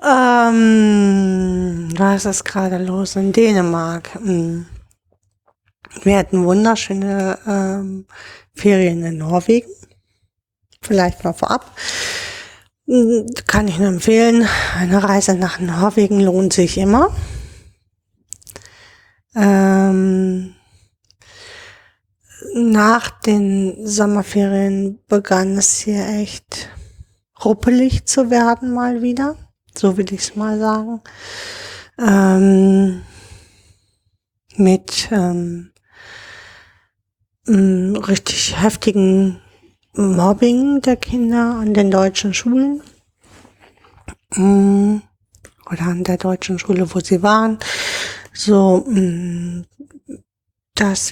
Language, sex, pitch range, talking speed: German, female, 175-215 Hz, 80 wpm